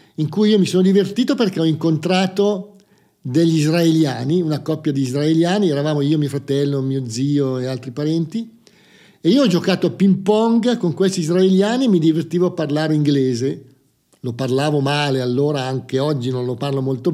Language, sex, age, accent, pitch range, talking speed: Italian, male, 50-69, native, 140-190 Hz, 170 wpm